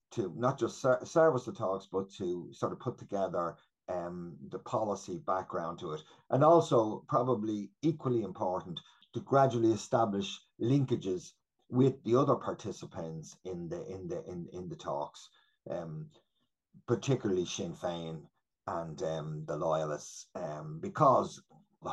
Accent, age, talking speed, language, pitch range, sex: Irish, 50-69, 125 wpm, English, 80-125 Hz, male